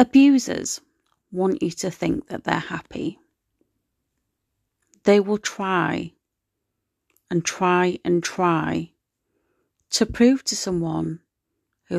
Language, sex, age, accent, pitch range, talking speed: English, female, 30-49, British, 155-215 Hz, 100 wpm